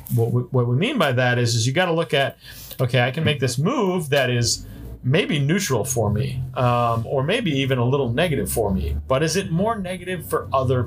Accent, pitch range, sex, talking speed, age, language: American, 110-135 Hz, male, 220 wpm, 40-59, English